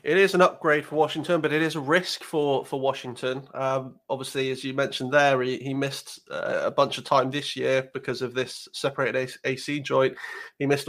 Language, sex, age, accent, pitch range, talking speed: English, male, 30-49, British, 125-145 Hz, 210 wpm